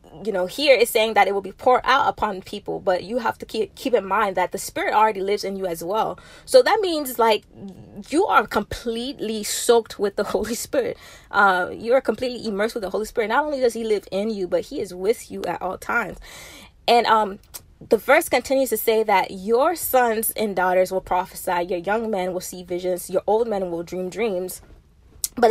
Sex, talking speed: female, 220 wpm